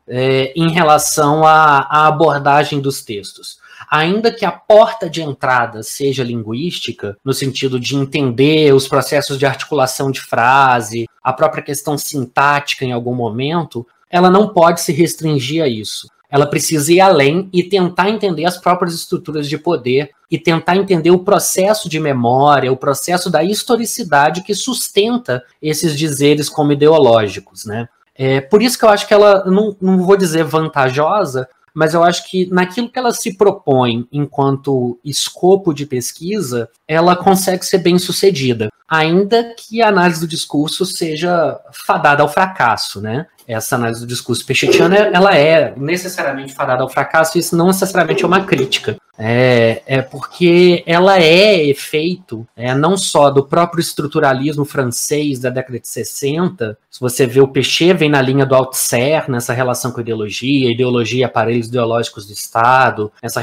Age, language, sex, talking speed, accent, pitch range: 20-39, Portuguese, male, 160 wpm, Brazilian, 130-175 Hz